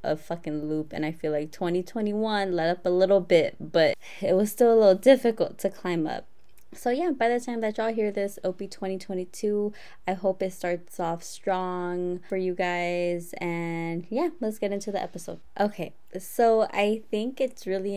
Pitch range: 170-205 Hz